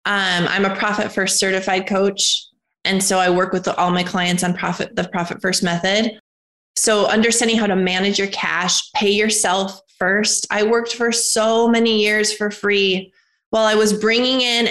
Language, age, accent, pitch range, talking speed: English, 20-39, American, 185-225 Hz, 180 wpm